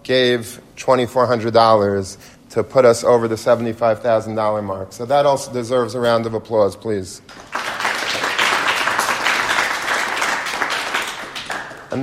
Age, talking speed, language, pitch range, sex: 40-59, 95 wpm, English, 115-130 Hz, male